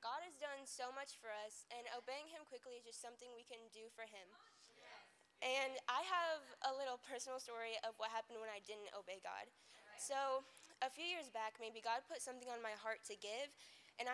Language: English